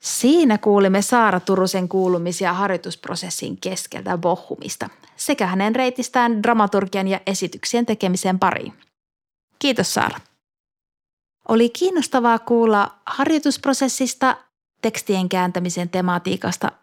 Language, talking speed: Finnish, 90 wpm